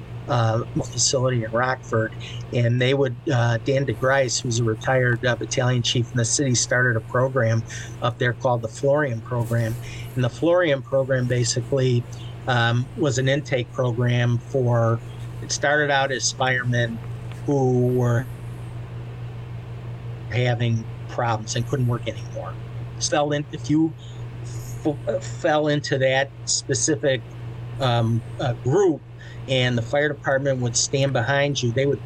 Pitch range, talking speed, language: 120-130 Hz, 135 wpm, English